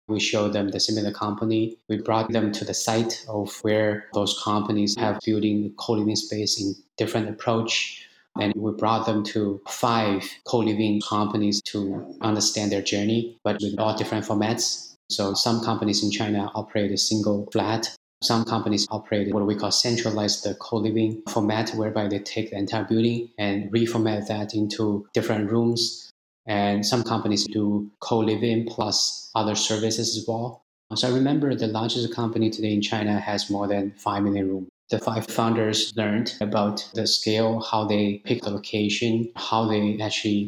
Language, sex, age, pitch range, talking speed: English, male, 20-39, 105-115 Hz, 165 wpm